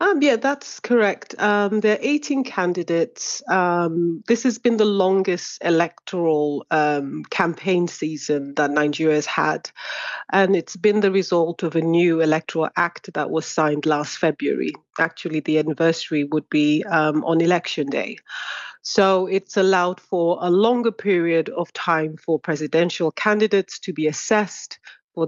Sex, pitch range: female, 160-195 Hz